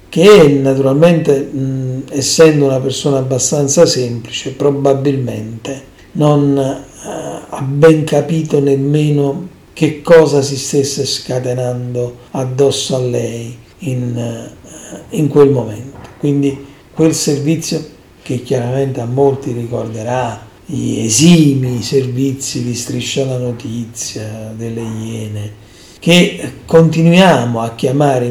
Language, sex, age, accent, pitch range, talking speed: Italian, male, 40-59, native, 125-150 Hz, 105 wpm